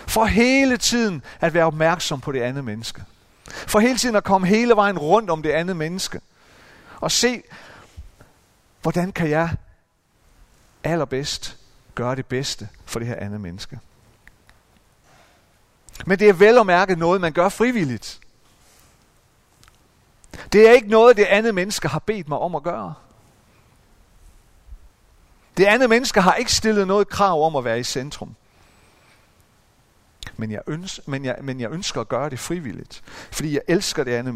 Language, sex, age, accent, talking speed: Danish, male, 40-59, native, 145 wpm